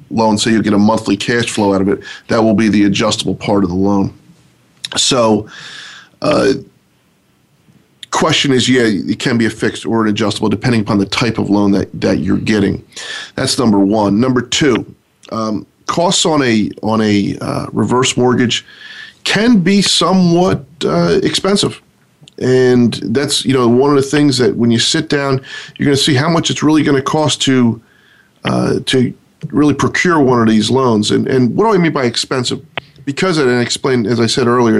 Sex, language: male, English